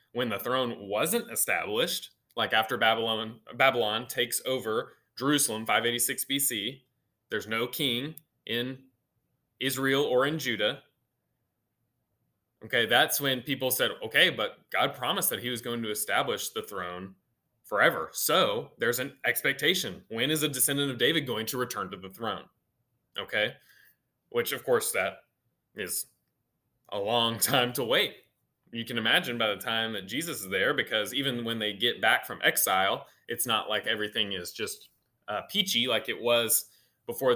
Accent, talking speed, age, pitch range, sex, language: American, 155 wpm, 20-39, 115-155 Hz, male, English